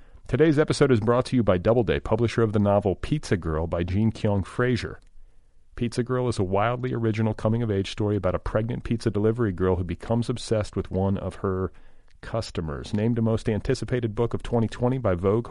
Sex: male